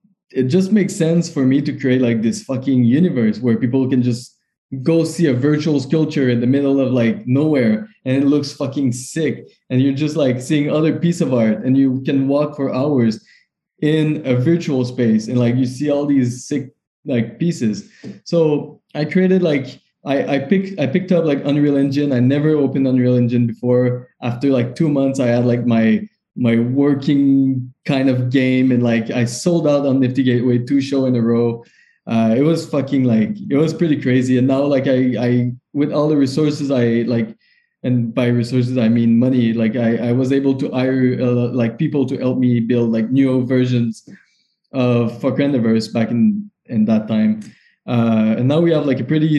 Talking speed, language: 200 wpm, English